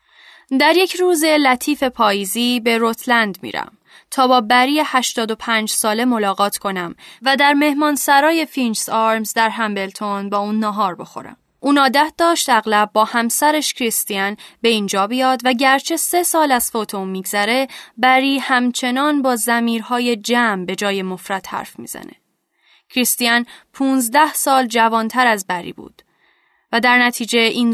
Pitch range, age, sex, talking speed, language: 225-270 Hz, 10-29, female, 140 wpm, Persian